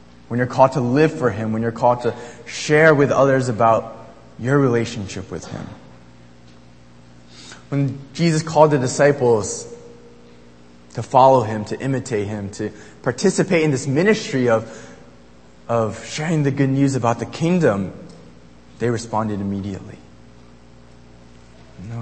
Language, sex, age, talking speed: English, male, 20-39, 130 wpm